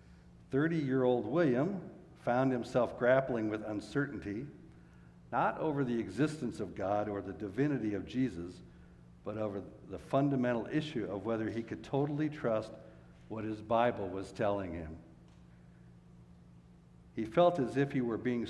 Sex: male